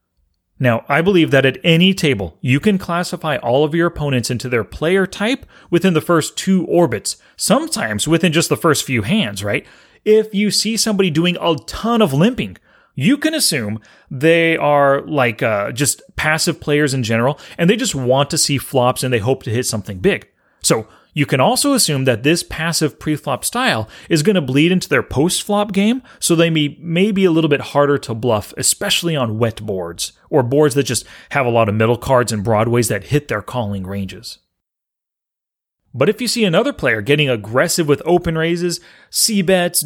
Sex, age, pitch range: male, 30-49, 125-180 Hz